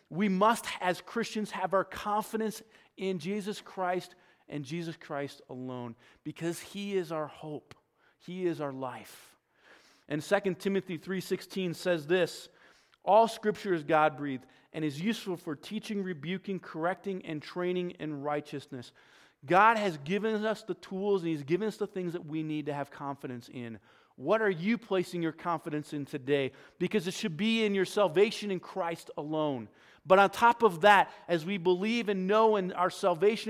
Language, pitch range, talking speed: English, 150-200 Hz, 170 wpm